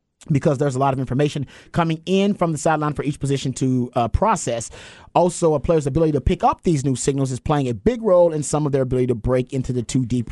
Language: English